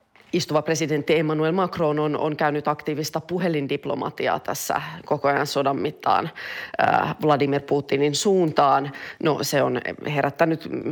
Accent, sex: native, female